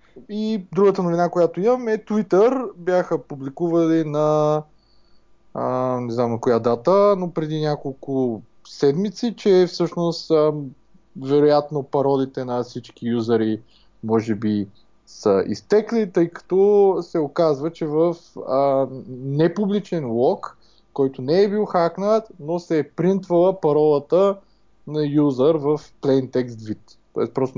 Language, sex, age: Bulgarian, male, 20-39